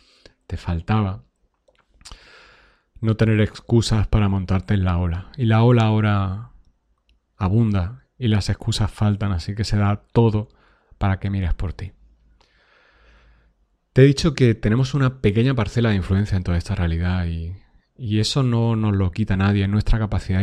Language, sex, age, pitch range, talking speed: Spanish, male, 30-49, 95-115 Hz, 160 wpm